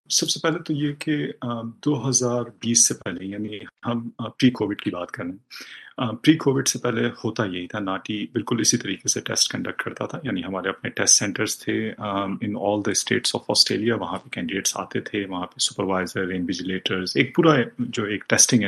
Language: Urdu